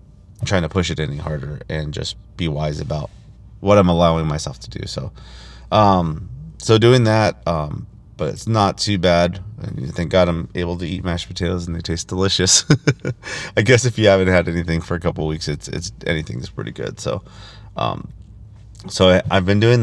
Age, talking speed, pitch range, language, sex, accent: 30-49, 190 wpm, 80-105 Hz, English, male, American